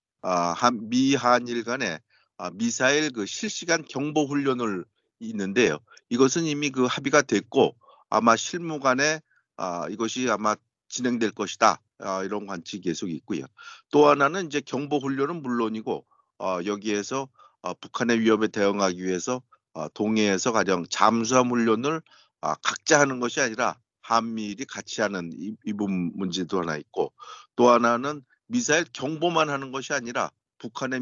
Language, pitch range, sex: Korean, 110-145 Hz, male